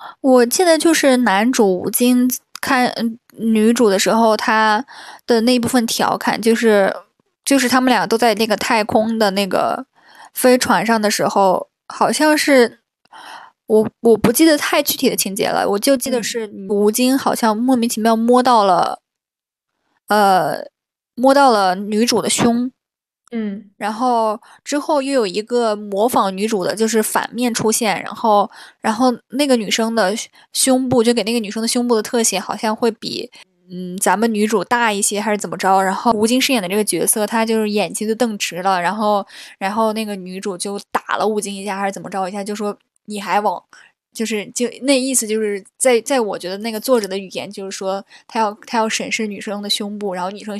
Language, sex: Chinese, female